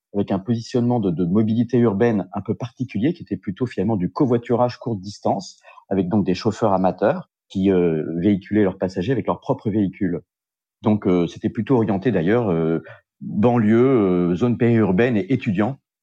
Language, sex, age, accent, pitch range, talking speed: French, male, 40-59, French, 90-115 Hz, 170 wpm